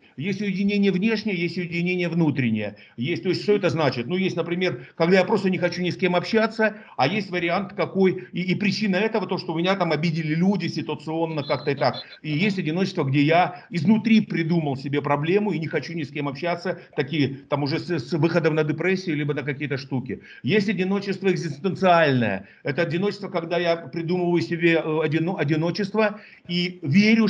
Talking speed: 185 wpm